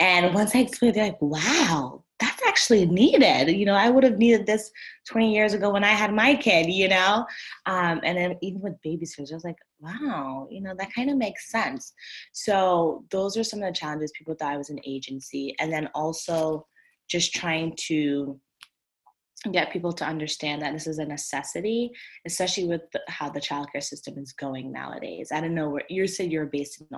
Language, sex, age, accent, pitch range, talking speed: English, female, 20-39, American, 145-175 Hz, 205 wpm